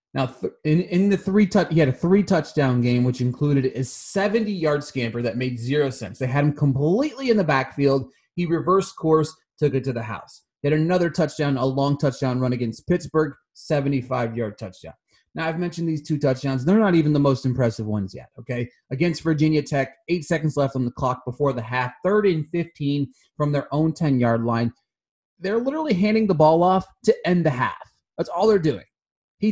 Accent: American